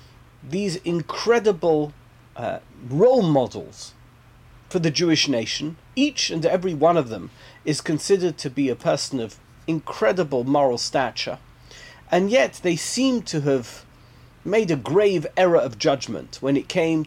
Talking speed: 140 wpm